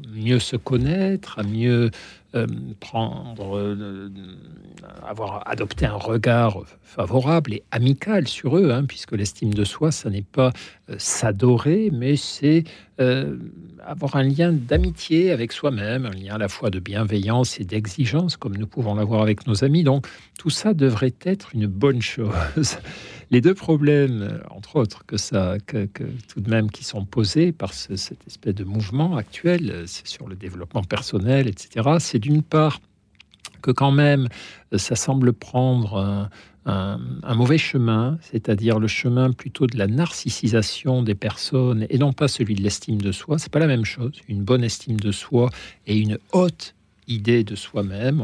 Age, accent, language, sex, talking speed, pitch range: 60-79, French, French, male, 170 wpm, 105-140 Hz